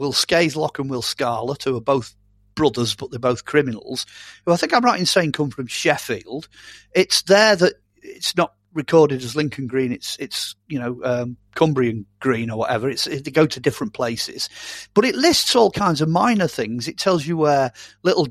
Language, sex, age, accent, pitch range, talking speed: English, male, 40-59, British, 130-180 Hz, 205 wpm